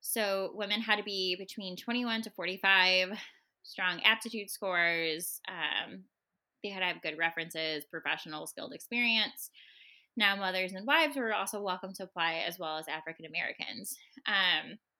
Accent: American